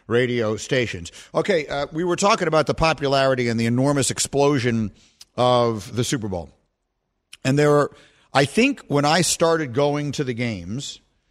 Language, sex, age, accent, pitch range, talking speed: English, male, 50-69, American, 115-150 Hz, 160 wpm